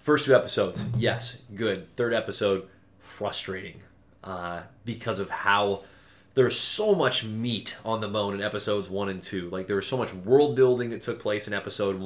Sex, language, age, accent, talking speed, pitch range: male, English, 30-49, American, 180 wpm, 95-115 Hz